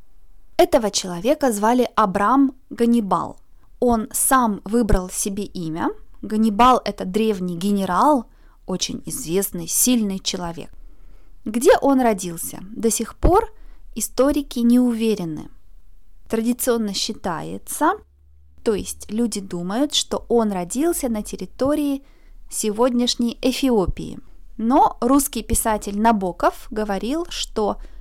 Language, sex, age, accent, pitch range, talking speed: Russian, female, 20-39, native, 195-255 Hz, 100 wpm